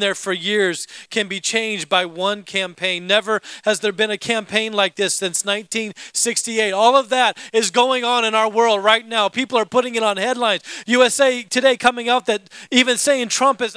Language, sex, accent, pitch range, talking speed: English, male, American, 225-315 Hz, 195 wpm